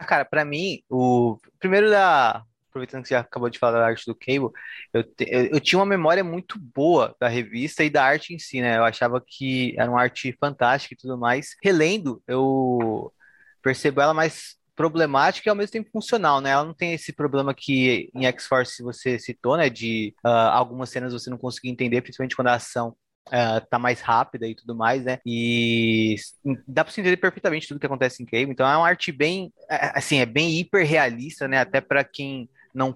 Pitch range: 125-155 Hz